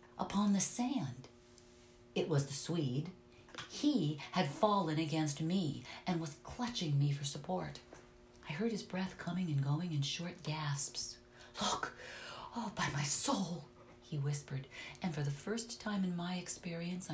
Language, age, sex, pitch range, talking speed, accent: English, 50-69, female, 120-170 Hz, 150 wpm, American